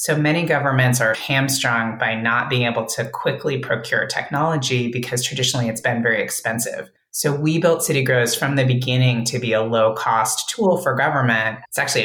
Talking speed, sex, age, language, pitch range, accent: 175 wpm, female, 30-49, English, 115-135 Hz, American